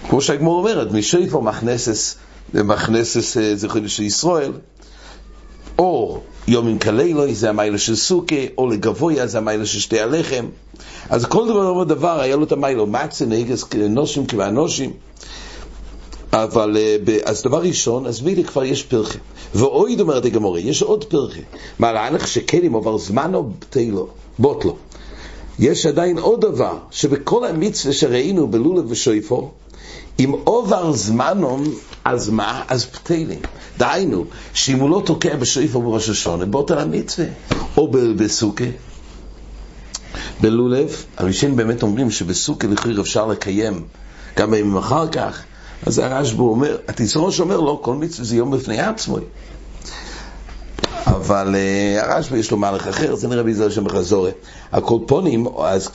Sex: male